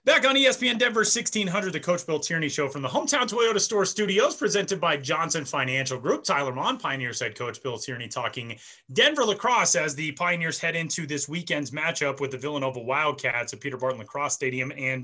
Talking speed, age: 195 wpm, 30-49